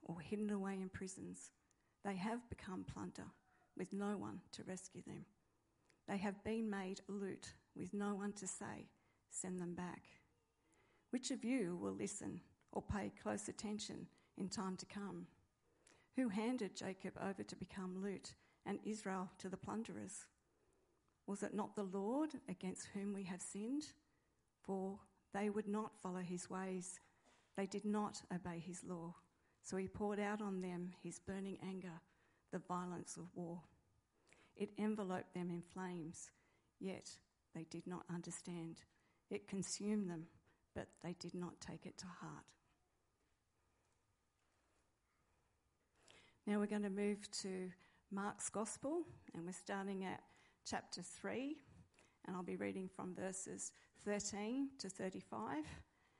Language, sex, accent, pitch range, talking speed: English, female, Australian, 180-210 Hz, 140 wpm